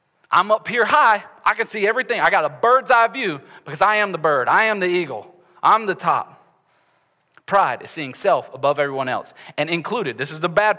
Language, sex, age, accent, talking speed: English, male, 30-49, American, 215 wpm